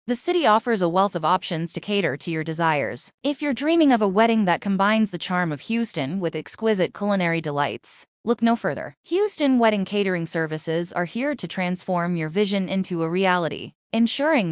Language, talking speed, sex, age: English, 185 wpm, female, 20-39